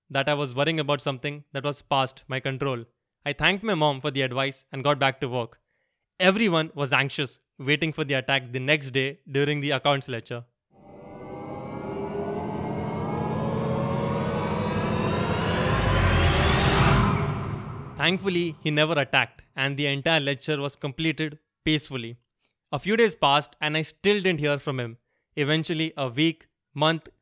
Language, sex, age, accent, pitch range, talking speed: English, male, 20-39, Indian, 135-155 Hz, 140 wpm